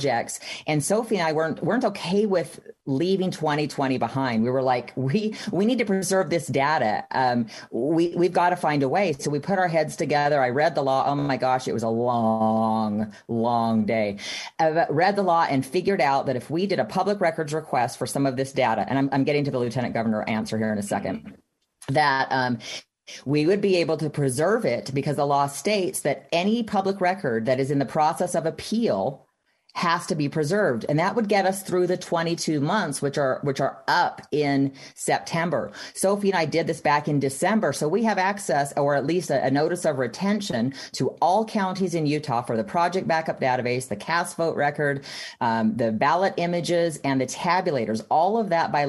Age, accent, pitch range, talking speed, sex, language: 30-49, American, 130-180 Hz, 210 wpm, female, English